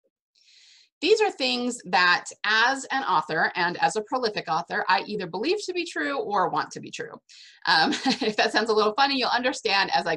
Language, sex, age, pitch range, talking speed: English, female, 30-49, 175-280 Hz, 200 wpm